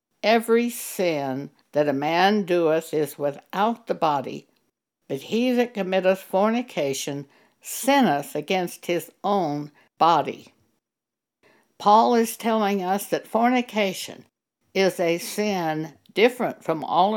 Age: 60-79